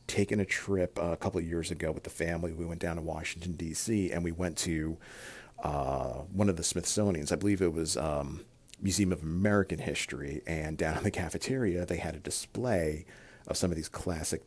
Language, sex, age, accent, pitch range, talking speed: English, male, 40-59, American, 80-100 Hz, 205 wpm